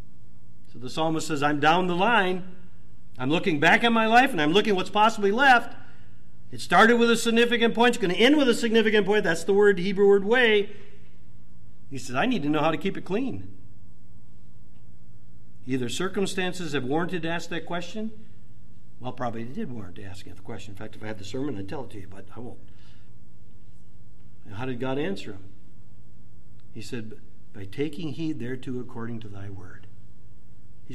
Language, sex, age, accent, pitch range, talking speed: English, male, 50-69, American, 110-175 Hz, 195 wpm